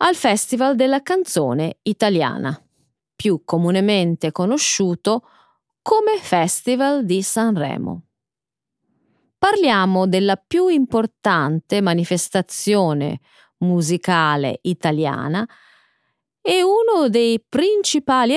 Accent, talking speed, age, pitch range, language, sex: native, 75 wpm, 30-49, 175-290 Hz, Italian, female